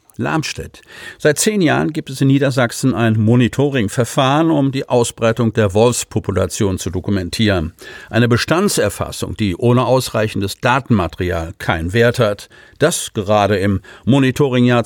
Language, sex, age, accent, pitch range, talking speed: German, male, 50-69, German, 100-130 Hz, 120 wpm